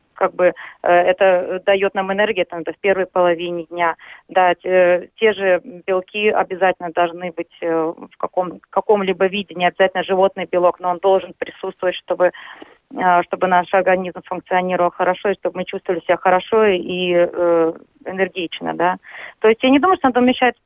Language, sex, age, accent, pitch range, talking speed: Russian, female, 30-49, native, 180-215 Hz, 160 wpm